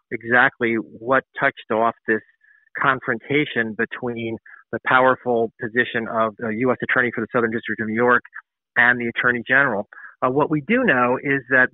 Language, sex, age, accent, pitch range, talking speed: English, male, 40-59, American, 120-140 Hz, 165 wpm